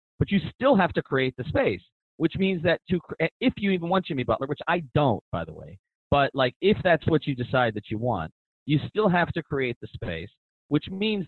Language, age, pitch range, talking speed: English, 40-59, 110-165 Hz, 230 wpm